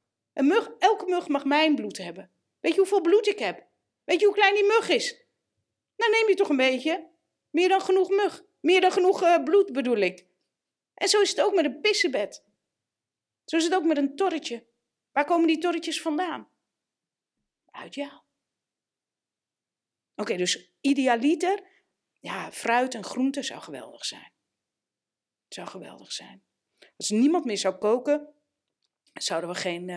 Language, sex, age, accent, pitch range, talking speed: Dutch, female, 40-59, Dutch, 220-345 Hz, 160 wpm